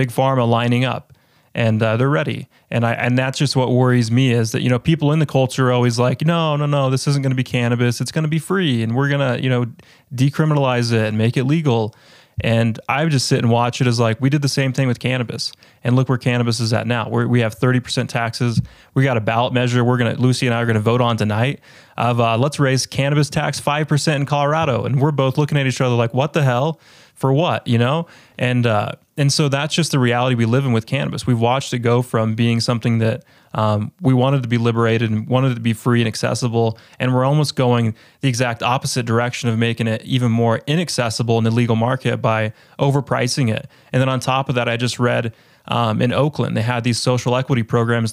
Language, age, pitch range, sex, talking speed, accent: English, 20-39, 115-135 Hz, male, 245 wpm, American